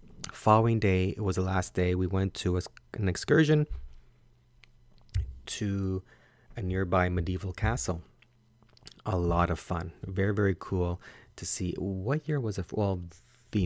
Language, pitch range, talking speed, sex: English, 90-105 Hz, 140 wpm, male